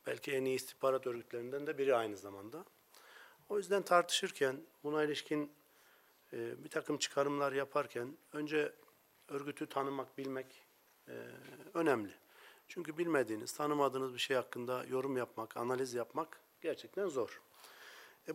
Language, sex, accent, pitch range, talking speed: Turkish, male, native, 130-170 Hz, 125 wpm